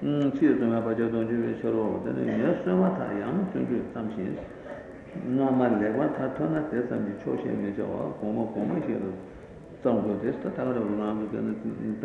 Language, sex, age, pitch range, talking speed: Italian, male, 60-79, 110-125 Hz, 50 wpm